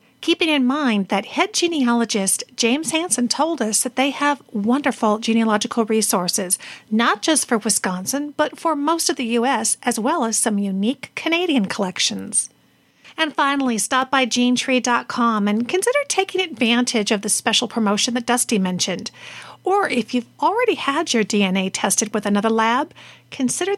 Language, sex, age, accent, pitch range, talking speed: English, female, 50-69, American, 220-290 Hz, 155 wpm